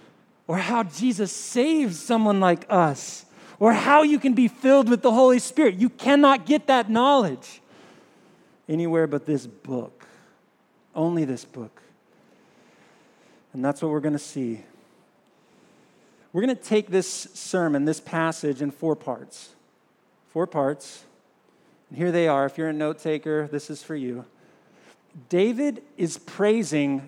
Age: 50-69